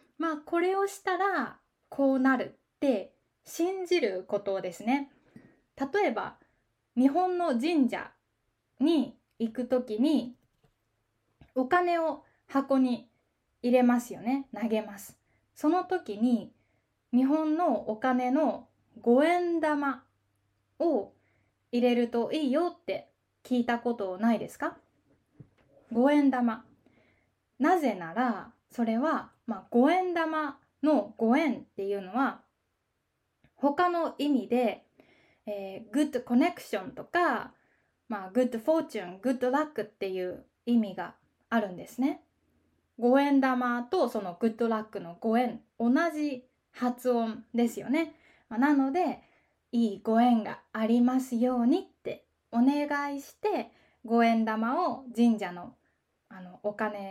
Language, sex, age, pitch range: Japanese, female, 20-39, 220-290 Hz